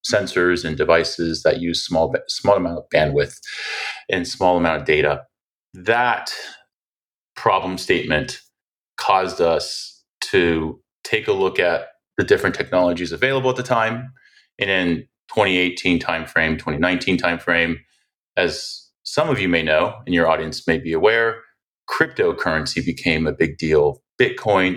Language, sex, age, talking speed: English, male, 30-49, 135 wpm